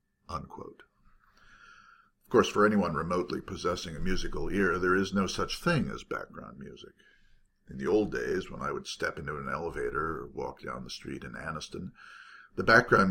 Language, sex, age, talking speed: English, male, 50-69, 170 wpm